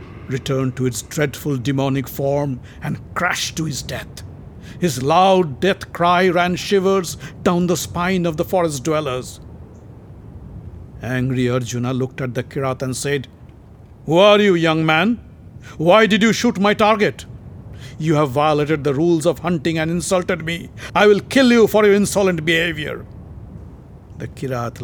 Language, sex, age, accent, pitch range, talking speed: English, male, 60-79, Indian, 125-180 Hz, 150 wpm